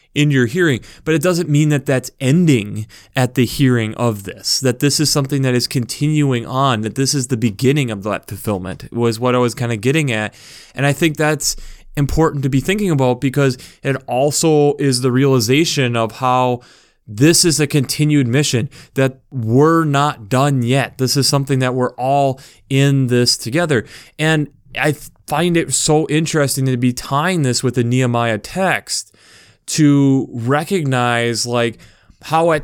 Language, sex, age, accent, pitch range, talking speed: English, male, 20-39, American, 120-145 Hz, 175 wpm